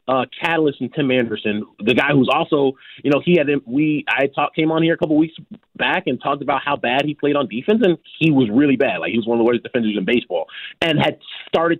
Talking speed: 260 wpm